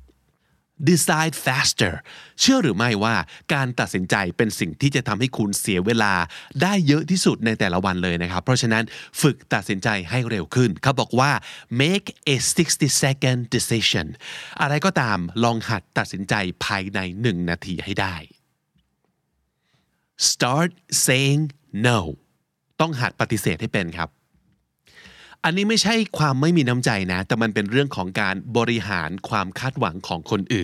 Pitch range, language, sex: 100-140 Hz, Thai, male